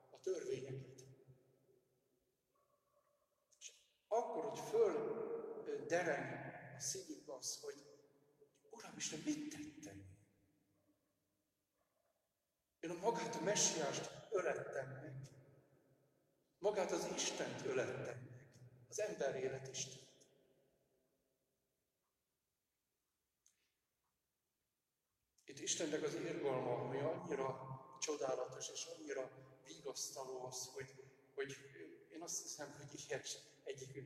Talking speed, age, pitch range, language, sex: 80 wpm, 60-79, 125-155 Hz, Hungarian, male